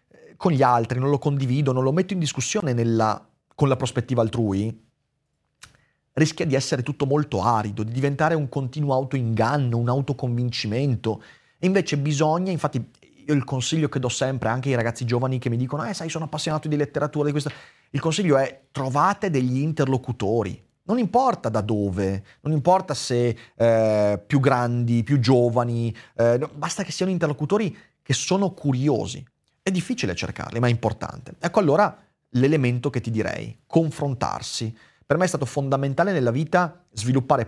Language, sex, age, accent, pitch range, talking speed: Italian, male, 30-49, native, 120-155 Hz, 160 wpm